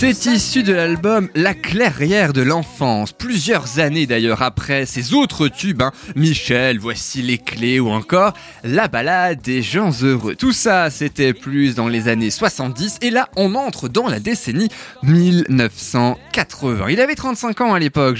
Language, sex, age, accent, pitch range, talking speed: French, male, 20-39, French, 125-190 Hz, 160 wpm